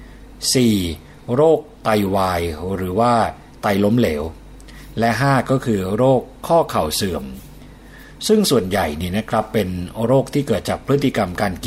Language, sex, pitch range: Thai, male, 95-120 Hz